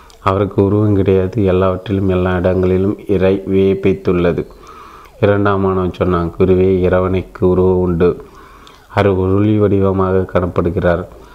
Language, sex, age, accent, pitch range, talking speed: Tamil, male, 30-49, native, 90-100 Hz, 100 wpm